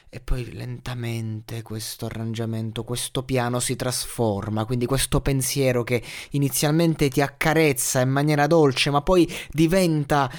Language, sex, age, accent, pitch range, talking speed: Italian, male, 20-39, native, 115-155 Hz, 125 wpm